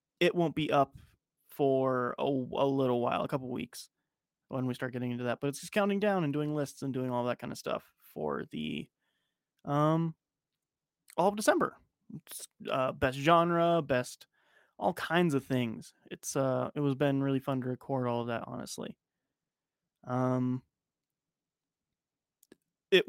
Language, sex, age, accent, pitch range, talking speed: English, male, 20-39, American, 130-165 Hz, 165 wpm